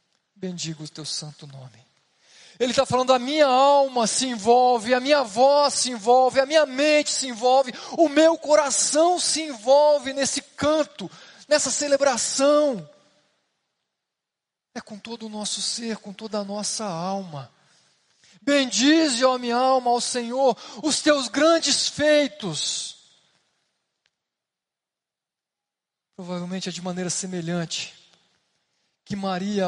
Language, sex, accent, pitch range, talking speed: Portuguese, male, Brazilian, 170-255 Hz, 120 wpm